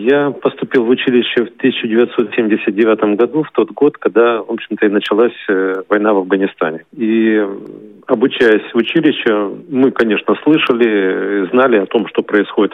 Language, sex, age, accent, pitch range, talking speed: Russian, male, 40-59, native, 100-125 Hz, 140 wpm